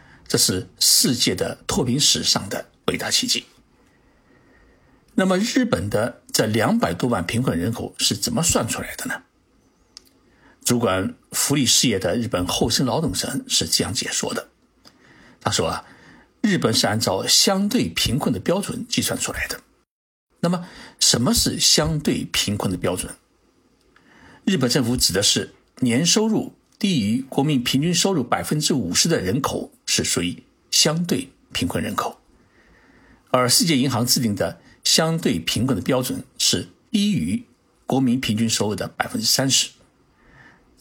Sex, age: male, 60-79